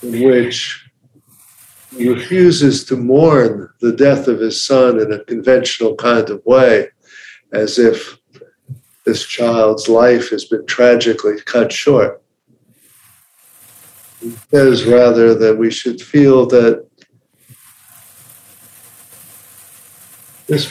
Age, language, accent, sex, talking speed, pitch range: 50-69, English, American, male, 100 wpm, 115-140 Hz